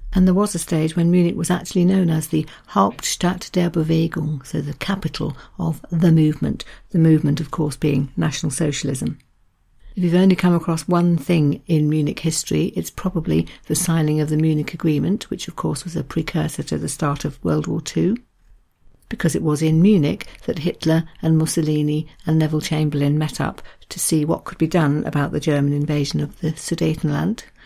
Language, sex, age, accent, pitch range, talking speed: English, female, 60-79, British, 150-175 Hz, 185 wpm